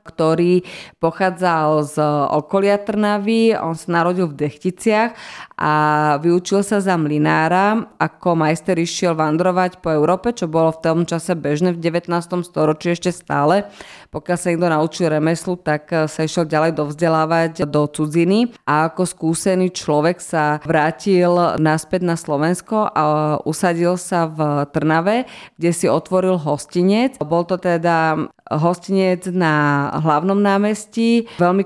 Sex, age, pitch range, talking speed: female, 20-39, 155-185 Hz, 135 wpm